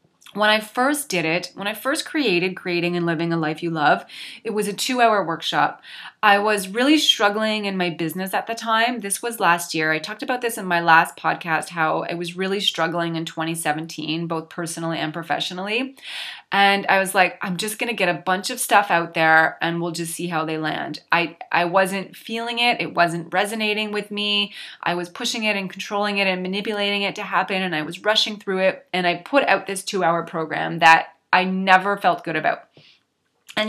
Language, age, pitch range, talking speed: English, 20-39, 170-215 Hz, 210 wpm